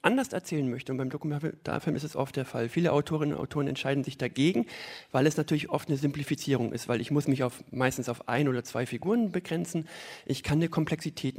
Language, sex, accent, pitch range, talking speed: German, male, German, 125-150 Hz, 210 wpm